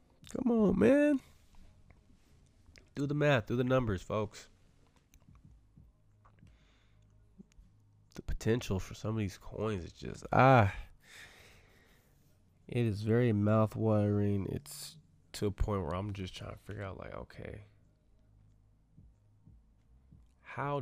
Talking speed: 110 wpm